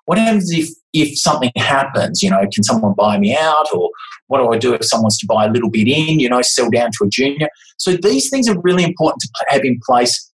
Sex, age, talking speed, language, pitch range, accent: male, 30-49, 255 wpm, English, 120-170 Hz, Australian